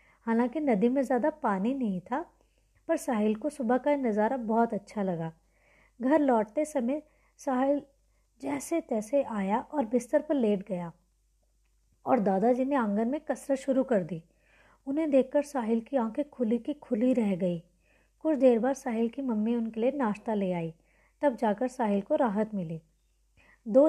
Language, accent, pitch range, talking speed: Hindi, native, 205-280 Hz, 165 wpm